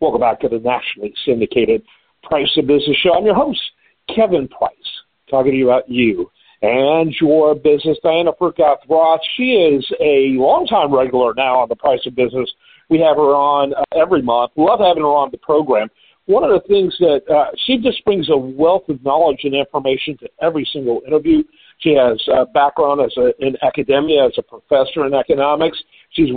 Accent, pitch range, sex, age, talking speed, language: American, 140-190 Hz, male, 50-69, 180 wpm, English